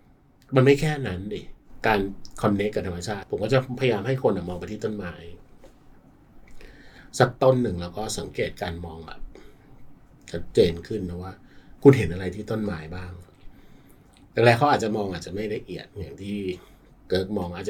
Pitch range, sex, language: 95-130 Hz, male, Thai